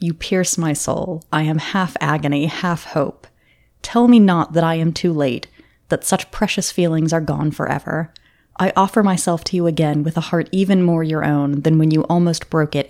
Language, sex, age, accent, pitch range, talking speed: English, female, 20-39, American, 150-180 Hz, 205 wpm